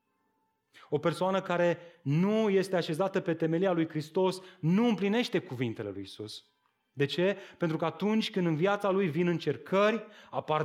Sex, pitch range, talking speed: male, 150-195 Hz, 150 wpm